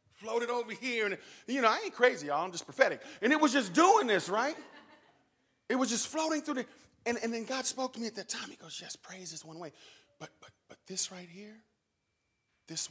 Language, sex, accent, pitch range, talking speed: English, male, American, 165-230 Hz, 235 wpm